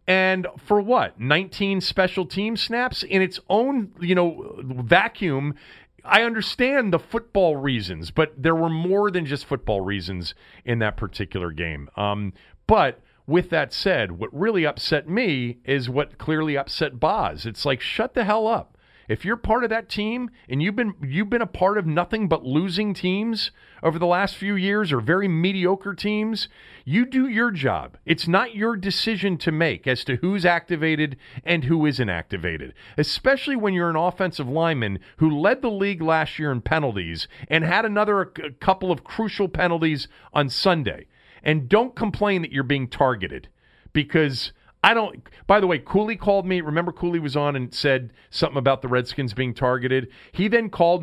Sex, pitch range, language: male, 125-190 Hz, English